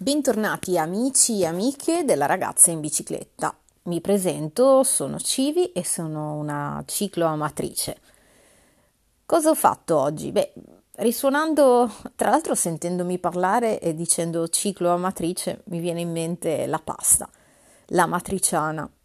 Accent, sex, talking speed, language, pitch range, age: native, female, 115 wpm, Italian, 170-230 Hz, 30-49